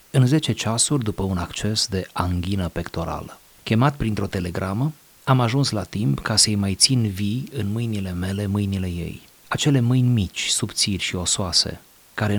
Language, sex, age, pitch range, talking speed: Romanian, male, 30-49, 95-125 Hz, 160 wpm